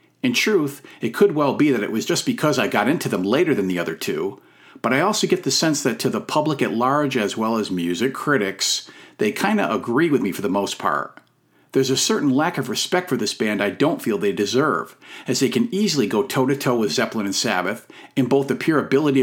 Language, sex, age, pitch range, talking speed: English, male, 50-69, 125-165 Hz, 235 wpm